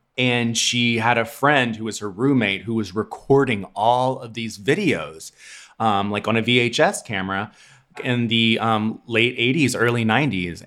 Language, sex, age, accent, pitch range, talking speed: English, male, 30-49, American, 105-140 Hz, 165 wpm